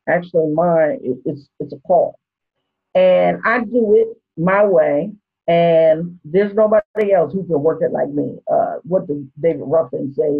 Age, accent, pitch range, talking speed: 40-59, American, 150-205 Hz, 160 wpm